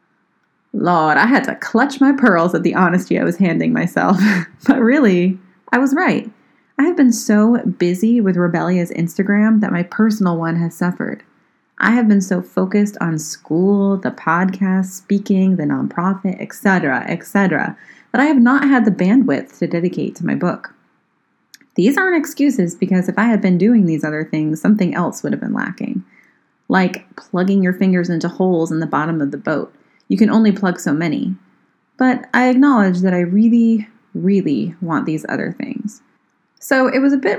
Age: 30-49